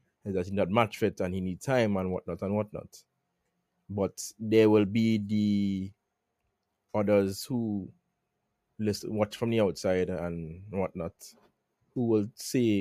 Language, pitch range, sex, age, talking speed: English, 95-115 Hz, male, 30-49, 140 wpm